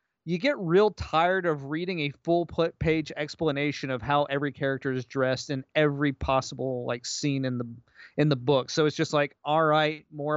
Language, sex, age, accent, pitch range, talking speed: English, male, 30-49, American, 135-160 Hz, 185 wpm